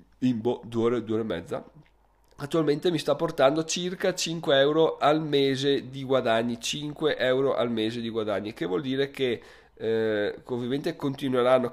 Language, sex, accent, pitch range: Italian, male, native, 110-150 Hz